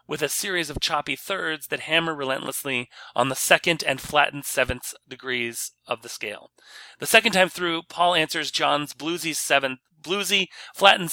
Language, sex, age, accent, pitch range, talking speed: English, male, 30-49, American, 135-165 Hz, 160 wpm